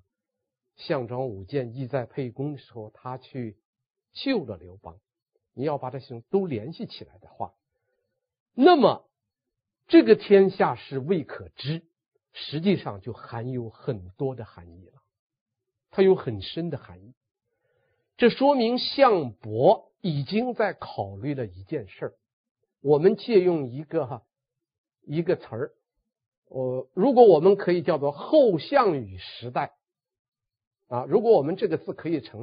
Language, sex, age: Chinese, male, 50-69